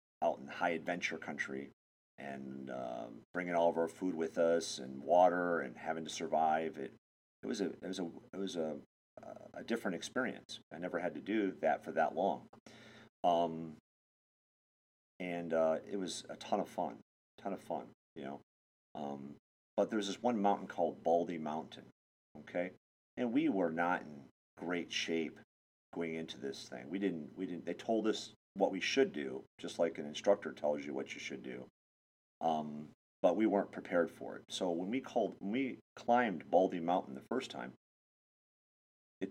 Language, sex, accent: English, male, American